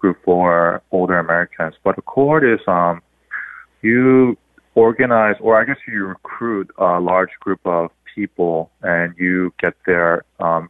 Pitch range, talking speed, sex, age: 85-100 Hz, 145 wpm, male, 20-39